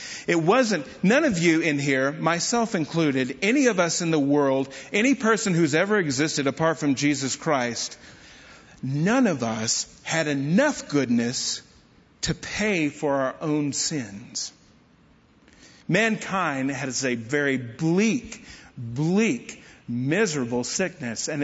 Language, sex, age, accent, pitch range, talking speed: English, male, 50-69, American, 135-175 Hz, 125 wpm